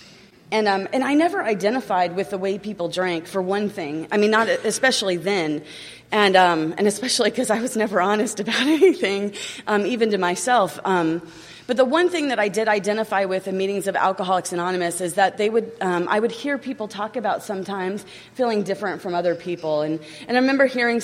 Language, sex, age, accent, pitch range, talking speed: English, female, 30-49, American, 185-225 Hz, 205 wpm